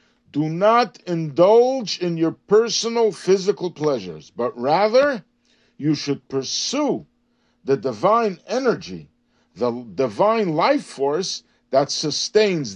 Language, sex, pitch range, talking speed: English, male, 150-230 Hz, 105 wpm